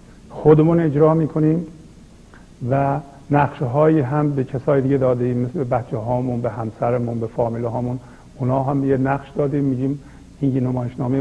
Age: 50-69